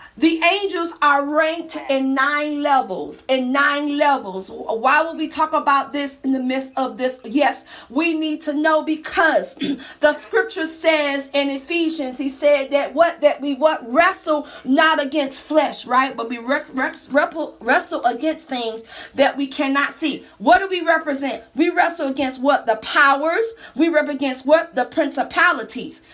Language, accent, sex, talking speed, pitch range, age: English, American, female, 165 wpm, 270-320 Hz, 40-59